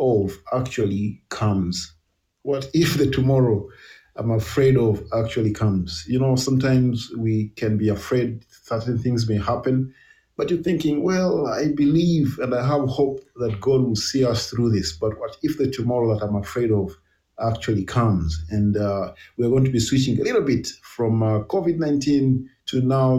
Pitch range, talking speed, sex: 110-140 Hz, 170 wpm, male